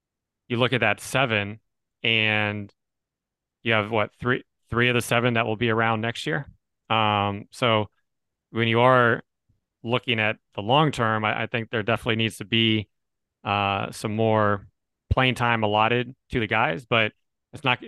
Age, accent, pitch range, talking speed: 30-49, American, 105-120 Hz, 170 wpm